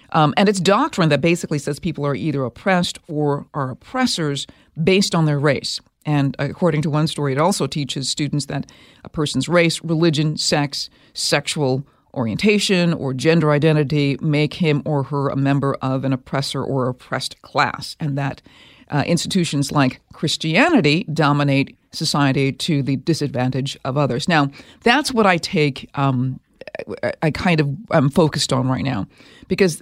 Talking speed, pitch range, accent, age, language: 155 wpm, 140-175 Hz, American, 50-69, English